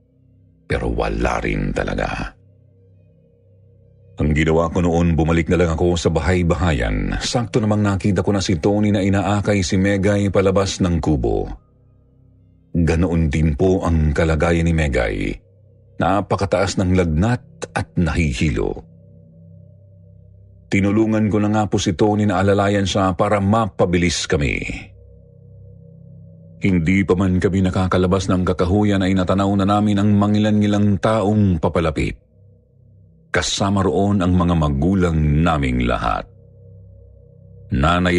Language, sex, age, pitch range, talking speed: Filipino, male, 40-59, 85-100 Hz, 120 wpm